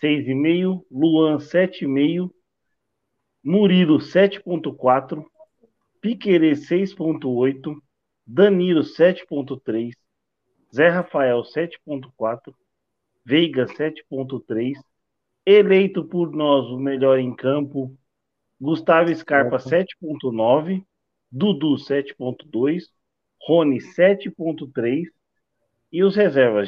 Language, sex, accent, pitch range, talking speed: Portuguese, male, Brazilian, 130-160 Hz, 70 wpm